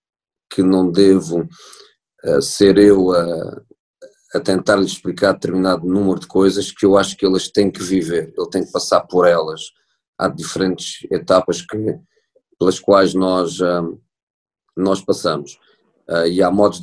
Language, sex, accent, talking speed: Portuguese, male, Portuguese, 150 wpm